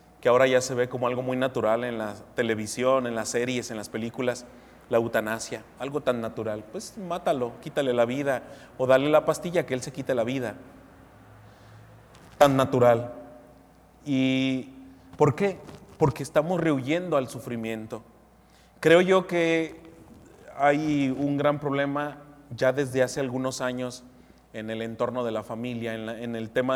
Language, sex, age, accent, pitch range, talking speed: Spanish, male, 30-49, Mexican, 120-150 Hz, 160 wpm